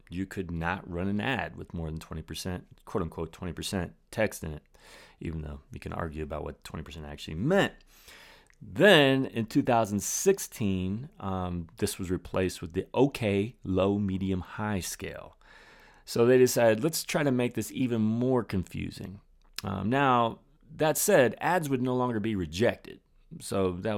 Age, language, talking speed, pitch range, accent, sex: 30-49, English, 150 wpm, 90-120 Hz, American, male